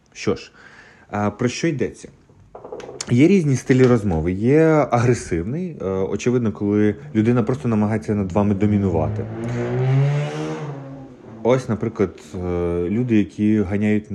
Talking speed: 100 wpm